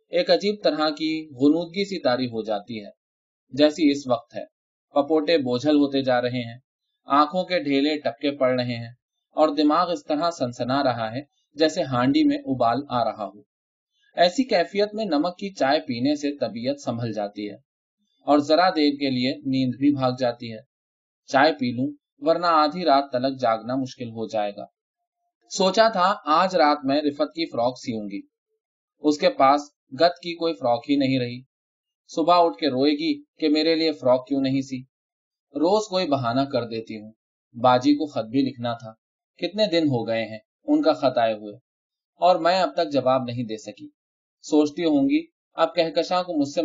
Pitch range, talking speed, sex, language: 125-180 Hz, 175 wpm, male, Urdu